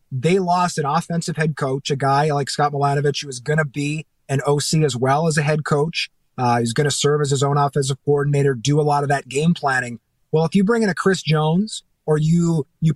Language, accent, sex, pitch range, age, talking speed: English, American, male, 145-170 Hz, 30-49, 230 wpm